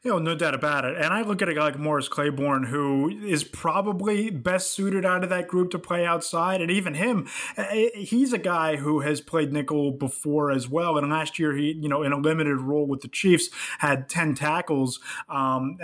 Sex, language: male, English